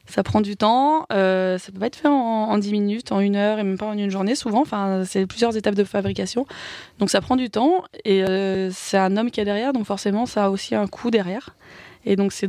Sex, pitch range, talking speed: female, 195-225 Hz, 250 wpm